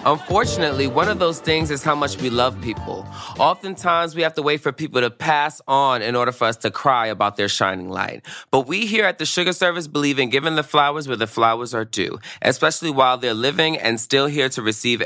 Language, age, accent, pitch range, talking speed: English, 20-39, American, 110-170 Hz, 225 wpm